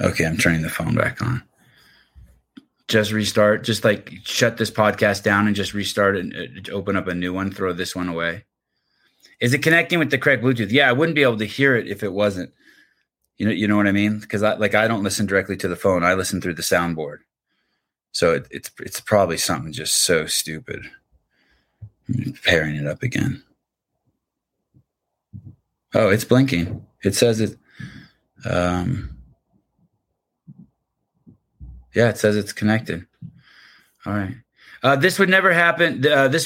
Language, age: English, 20-39